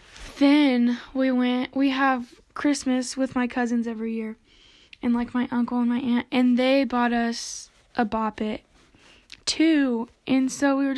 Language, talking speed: English, 160 wpm